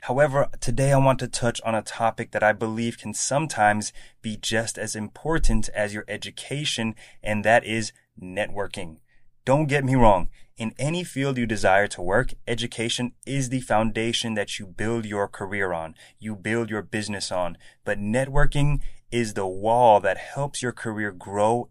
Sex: male